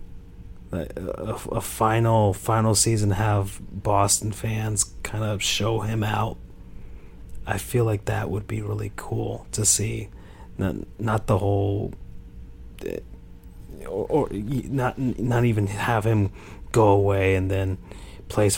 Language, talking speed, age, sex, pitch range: English, 125 wpm, 30-49, male, 100-115 Hz